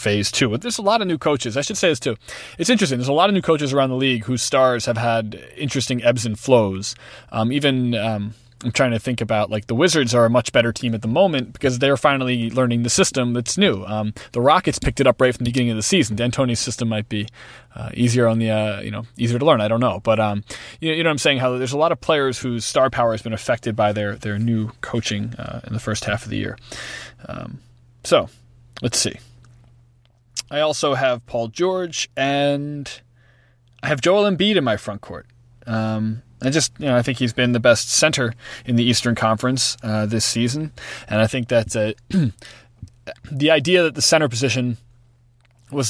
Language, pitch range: English, 115-135 Hz